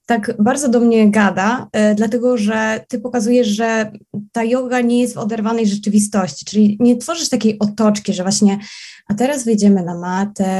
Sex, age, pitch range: female, 20-39, 205-240 Hz